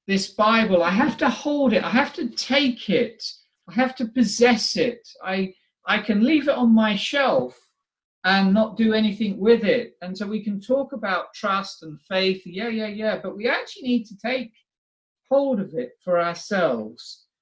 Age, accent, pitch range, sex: 50-69, British, 180-240 Hz, male